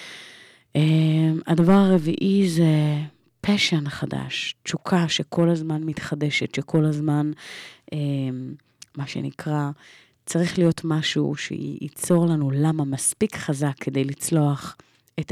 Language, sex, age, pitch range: Hebrew, female, 30-49, 140-165 Hz